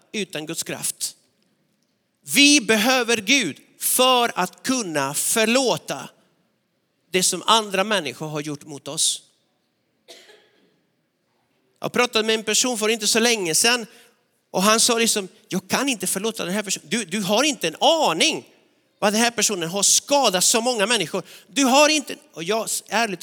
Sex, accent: male, native